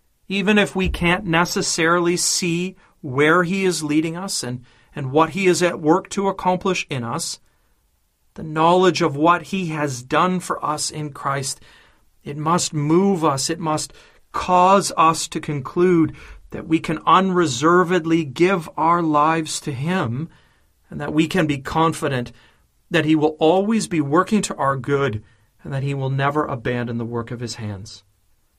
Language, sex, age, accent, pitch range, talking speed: English, male, 40-59, American, 130-170 Hz, 165 wpm